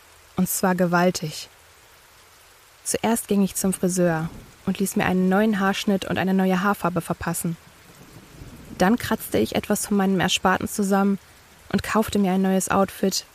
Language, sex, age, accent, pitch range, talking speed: German, female, 20-39, German, 180-205 Hz, 150 wpm